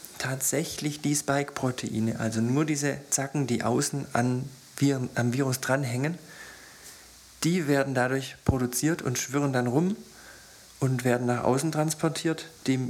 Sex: male